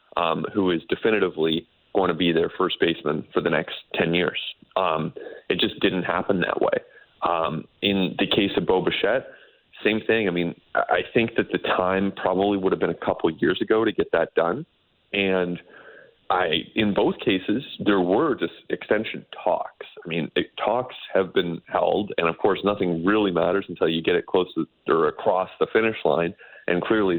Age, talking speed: 30-49, 190 wpm